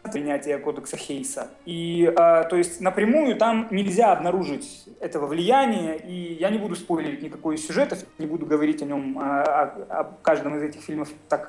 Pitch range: 165-230 Hz